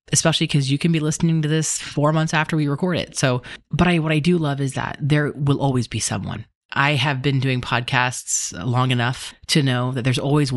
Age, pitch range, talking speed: 30-49, 120-150 Hz, 225 wpm